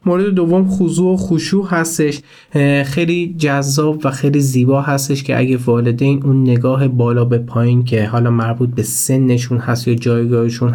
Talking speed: 155 wpm